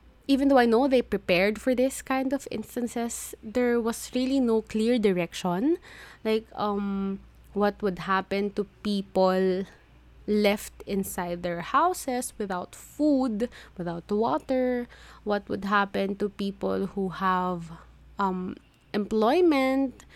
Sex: female